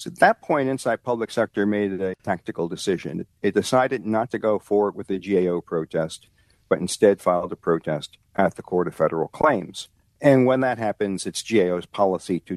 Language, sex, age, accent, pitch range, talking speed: English, male, 50-69, American, 95-115 Hz, 190 wpm